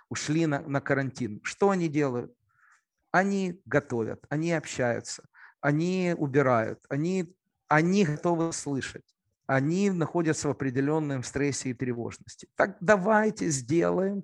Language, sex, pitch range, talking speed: Ukrainian, male, 130-165 Hz, 115 wpm